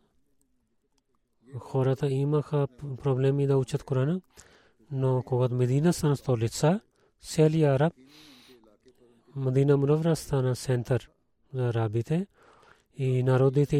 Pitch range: 125-145 Hz